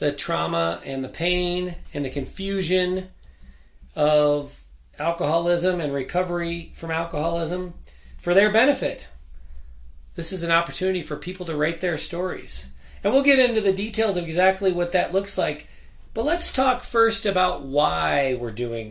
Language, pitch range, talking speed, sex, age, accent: English, 125-170 Hz, 150 wpm, male, 30-49, American